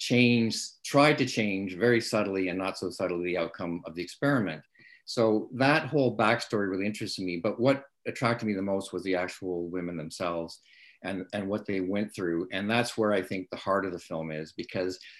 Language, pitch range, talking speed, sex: English, 90-115 Hz, 200 wpm, male